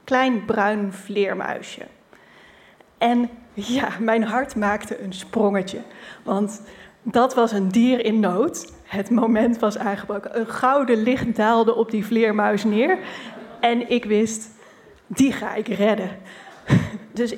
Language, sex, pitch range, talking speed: Dutch, female, 210-250 Hz, 130 wpm